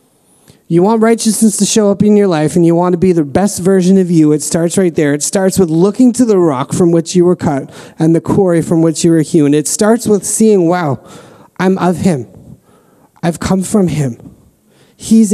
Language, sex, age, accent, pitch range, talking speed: English, male, 30-49, American, 165-210 Hz, 220 wpm